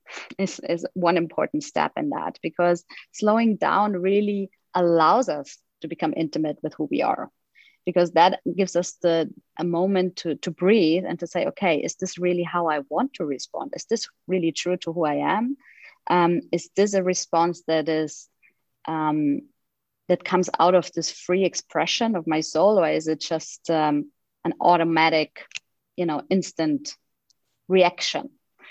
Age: 20-39